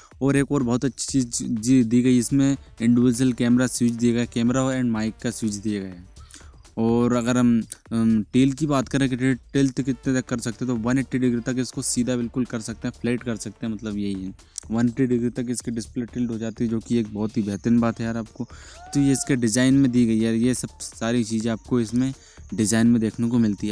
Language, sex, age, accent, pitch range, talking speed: Hindi, male, 20-39, native, 115-130 Hz, 235 wpm